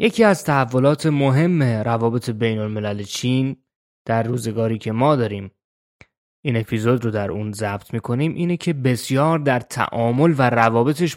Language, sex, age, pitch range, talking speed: Persian, male, 20-39, 110-145 Hz, 145 wpm